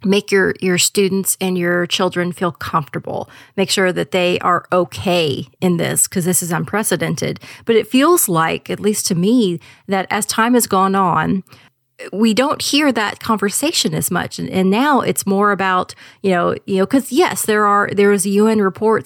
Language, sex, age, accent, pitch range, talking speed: English, female, 30-49, American, 175-205 Hz, 190 wpm